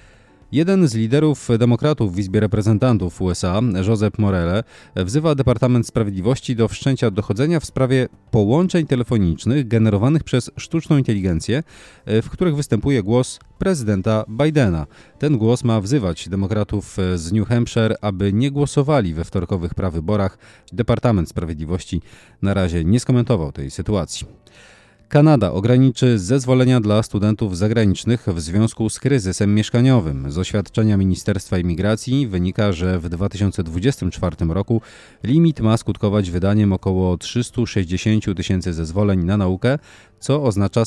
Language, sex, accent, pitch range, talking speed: Polish, male, native, 95-125 Hz, 125 wpm